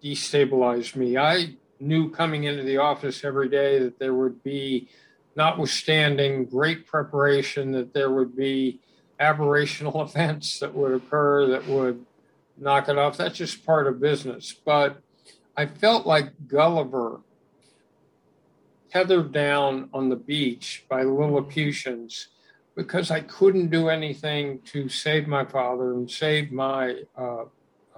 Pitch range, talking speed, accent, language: 130-155 Hz, 130 wpm, American, English